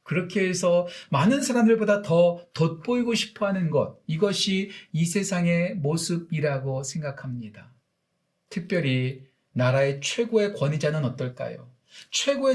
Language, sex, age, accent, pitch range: Korean, male, 40-59, native, 150-215 Hz